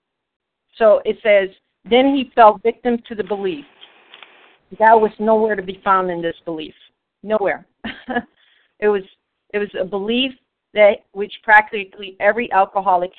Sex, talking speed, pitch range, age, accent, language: female, 140 wpm, 190-230 Hz, 50-69, American, English